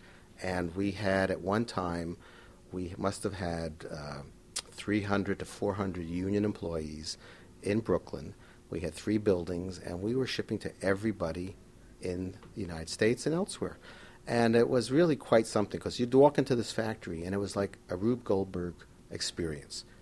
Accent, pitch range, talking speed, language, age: American, 85-110 Hz, 160 wpm, English, 50-69